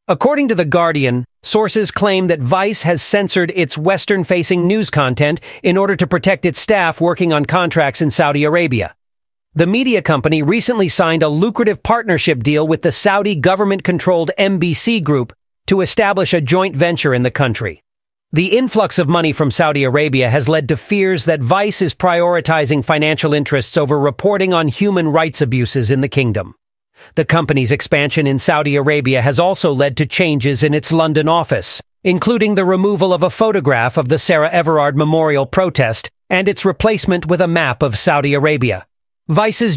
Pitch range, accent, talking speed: 145-185 Hz, American, 170 wpm